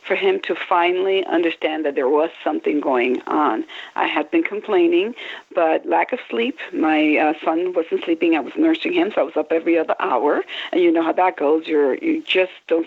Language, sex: English, female